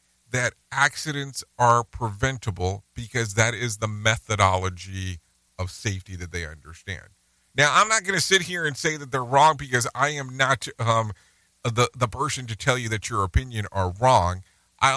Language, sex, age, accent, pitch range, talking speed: English, male, 40-59, American, 90-130 Hz, 170 wpm